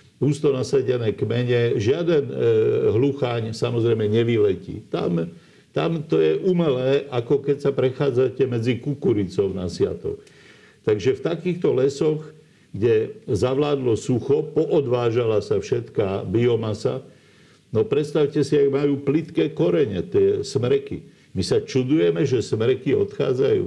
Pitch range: 115-190 Hz